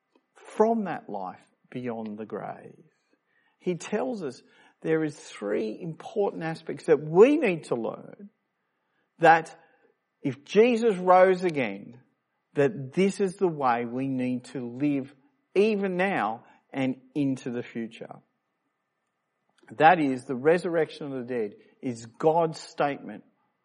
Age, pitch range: 50-69, 135-190 Hz